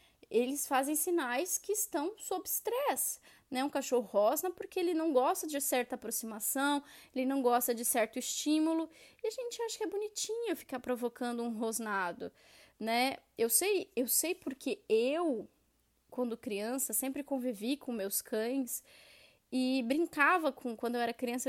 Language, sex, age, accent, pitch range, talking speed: Portuguese, female, 10-29, Brazilian, 240-310 Hz, 155 wpm